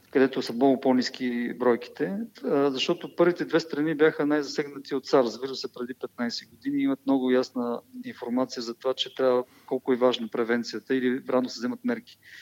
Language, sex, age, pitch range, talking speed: Bulgarian, male, 40-59, 125-150 Hz, 175 wpm